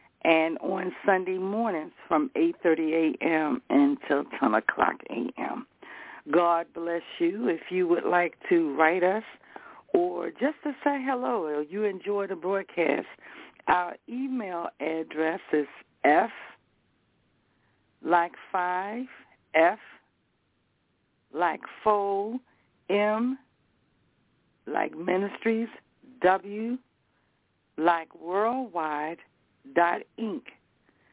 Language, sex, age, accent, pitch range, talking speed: English, female, 60-79, American, 165-225 Hz, 95 wpm